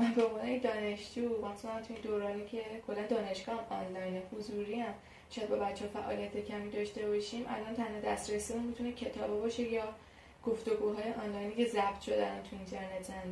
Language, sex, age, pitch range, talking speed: Persian, female, 10-29, 210-250 Hz, 145 wpm